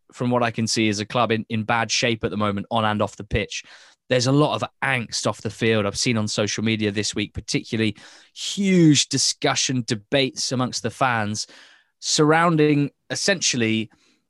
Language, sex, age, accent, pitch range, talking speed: English, male, 20-39, British, 110-135 Hz, 185 wpm